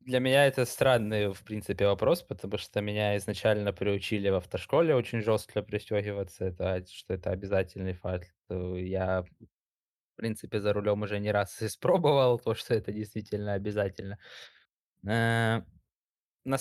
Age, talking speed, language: 20-39, 130 wpm, Ukrainian